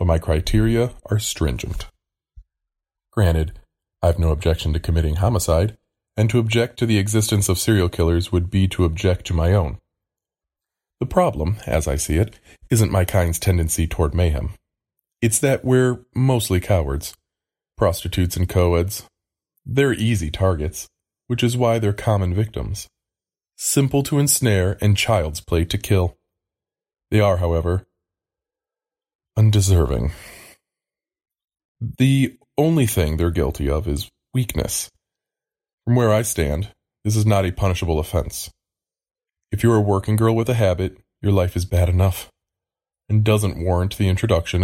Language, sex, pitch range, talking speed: English, male, 85-110 Hz, 145 wpm